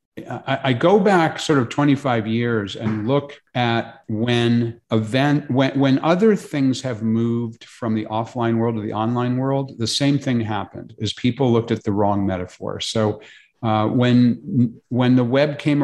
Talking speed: 165 wpm